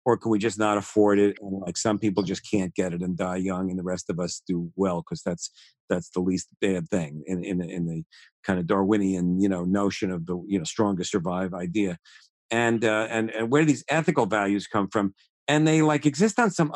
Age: 50-69